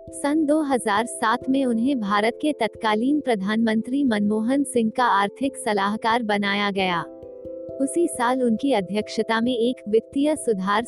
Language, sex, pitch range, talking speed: Hindi, female, 210-255 Hz, 125 wpm